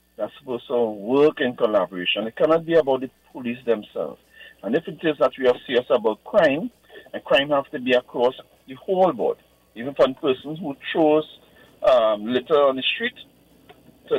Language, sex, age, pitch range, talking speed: English, male, 50-69, 115-175 Hz, 180 wpm